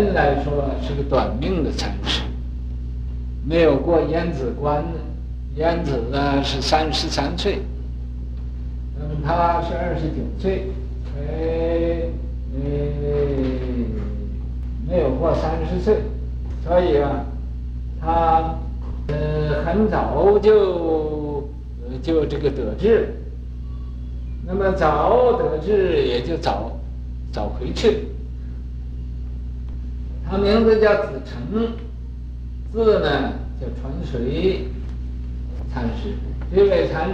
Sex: male